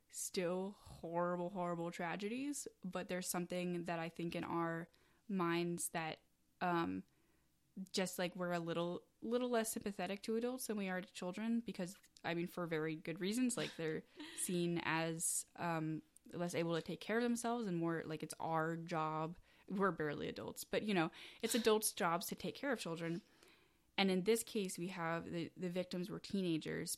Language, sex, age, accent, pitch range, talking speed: English, female, 10-29, American, 170-205 Hz, 180 wpm